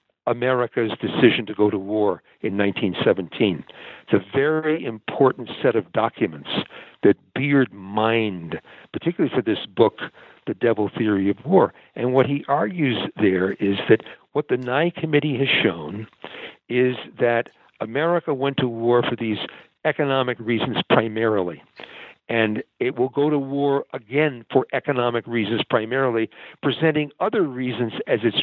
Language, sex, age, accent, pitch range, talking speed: English, male, 60-79, American, 115-155 Hz, 140 wpm